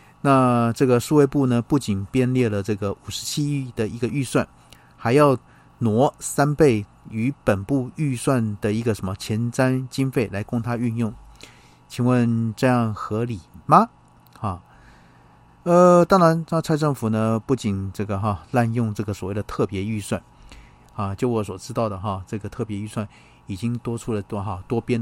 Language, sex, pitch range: Chinese, male, 100-130 Hz